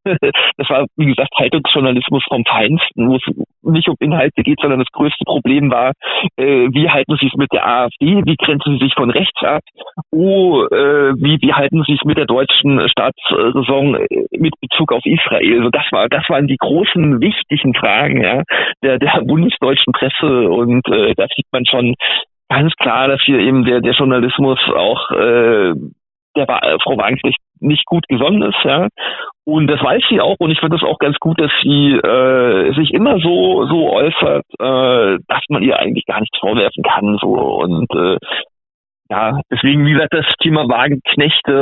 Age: 40-59